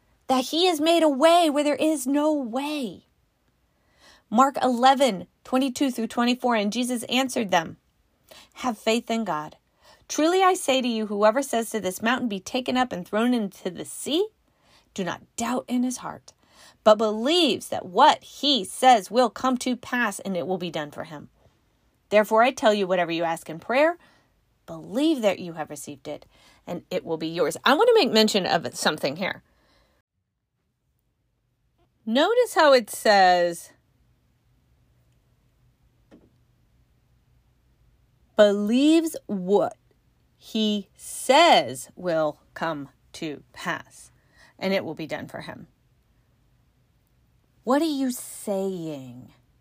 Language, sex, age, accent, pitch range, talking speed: English, female, 30-49, American, 185-270 Hz, 140 wpm